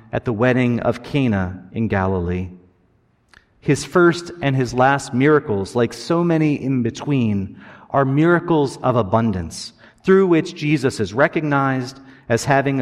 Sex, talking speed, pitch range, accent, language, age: male, 135 wpm, 120-155 Hz, American, English, 40-59